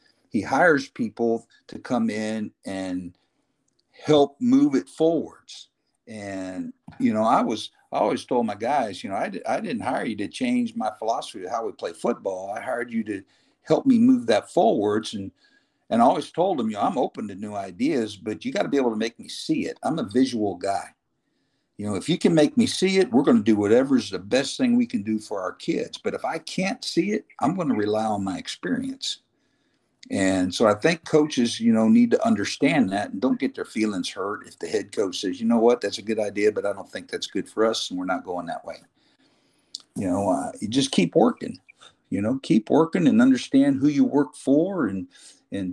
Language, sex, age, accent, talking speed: English, male, 50-69, American, 225 wpm